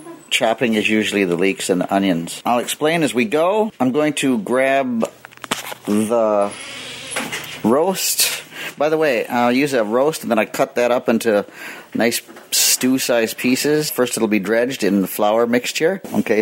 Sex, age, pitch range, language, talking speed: male, 50-69, 110-150 Hz, English, 165 wpm